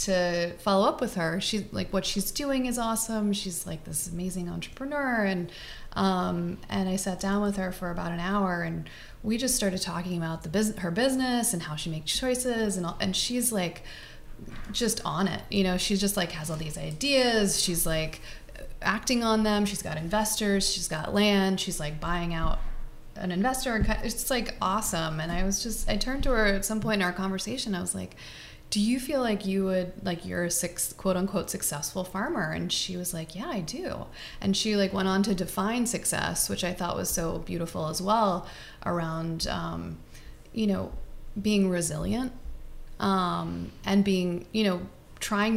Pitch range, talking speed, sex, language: 175-215 Hz, 190 wpm, female, English